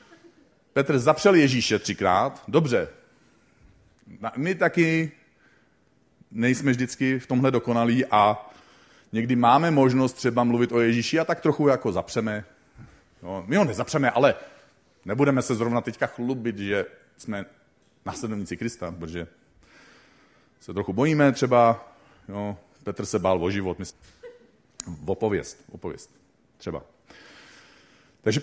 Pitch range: 105-160 Hz